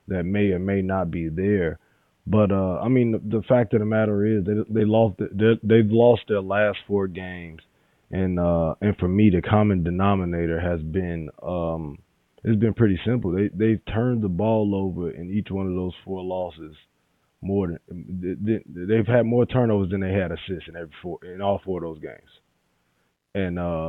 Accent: American